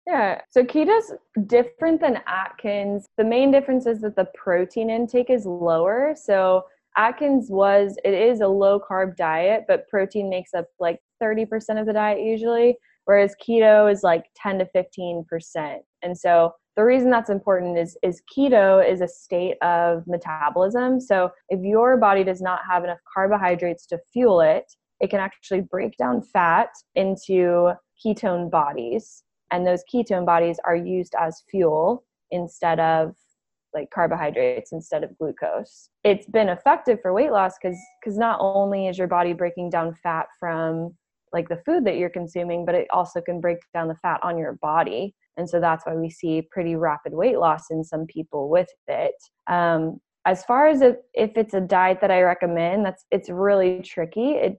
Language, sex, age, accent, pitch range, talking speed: English, female, 20-39, American, 175-225 Hz, 175 wpm